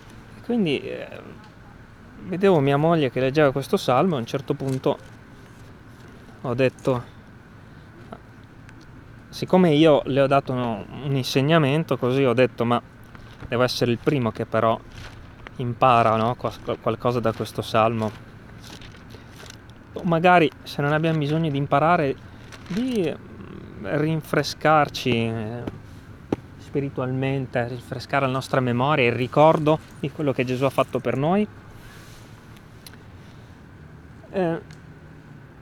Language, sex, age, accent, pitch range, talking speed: Italian, male, 20-39, native, 115-145 Hz, 110 wpm